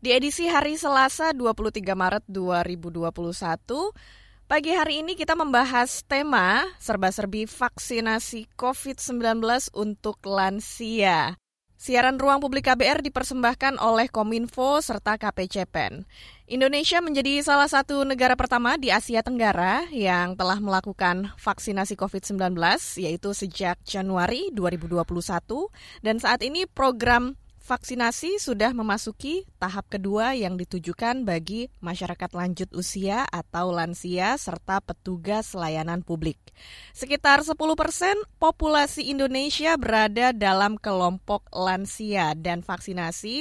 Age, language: 20-39, Indonesian